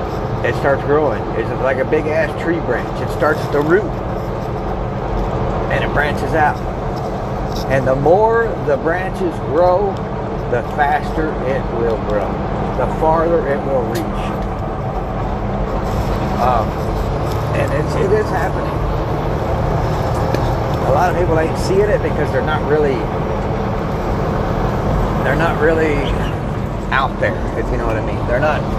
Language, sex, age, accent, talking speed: English, male, 50-69, American, 130 wpm